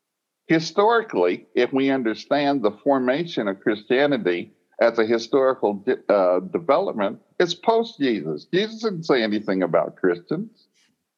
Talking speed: 115 wpm